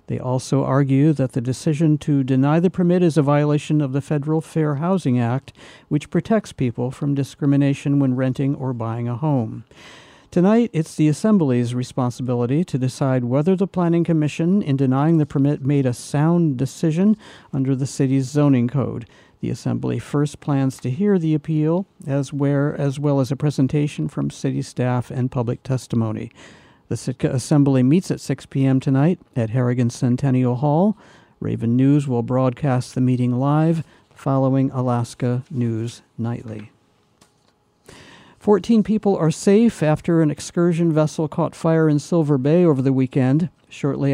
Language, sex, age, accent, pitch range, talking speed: English, male, 60-79, American, 130-160 Hz, 155 wpm